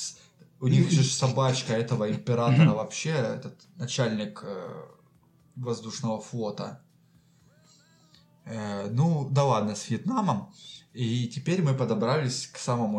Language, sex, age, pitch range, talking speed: Russian, male, 20-39, 115-150 Hz, 100 wpm